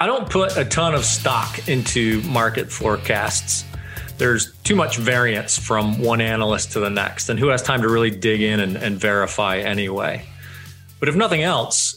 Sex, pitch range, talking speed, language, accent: male, 105-135 Hz, 180 wpm, English, American